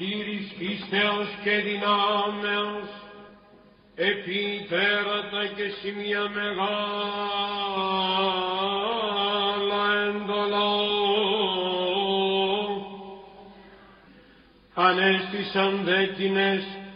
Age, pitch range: 50-69, 195-205 Hz